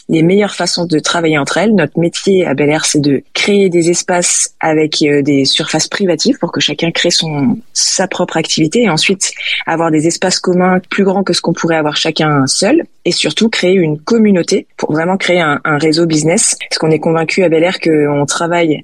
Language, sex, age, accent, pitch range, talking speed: French, female, 20-39, French, 155-180 Hz, 205 wpm